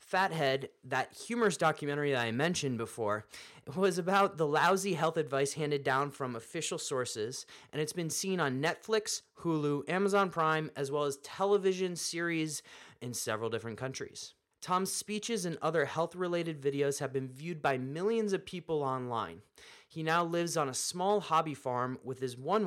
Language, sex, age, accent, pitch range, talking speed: English, male, 30-49, American, 130-185 Hz, 165 wpm